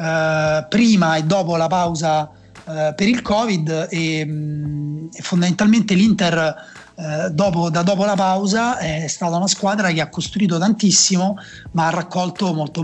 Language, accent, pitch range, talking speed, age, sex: Italian, native, 160-190 Hz, 130 wpm, 30-49, male